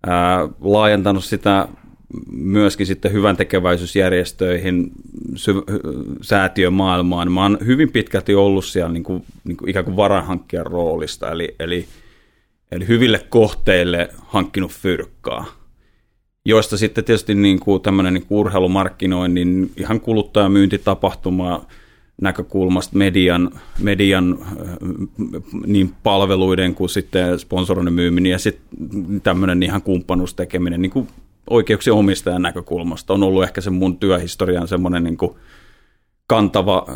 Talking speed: 100 wpm